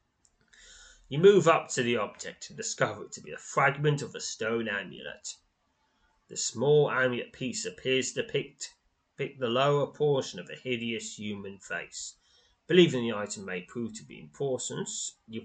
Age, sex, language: 20-39, male, English